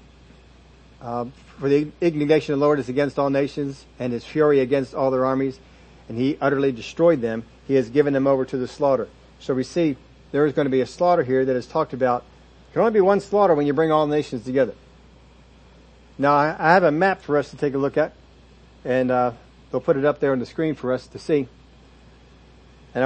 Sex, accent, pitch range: male, American, 130-165 Hz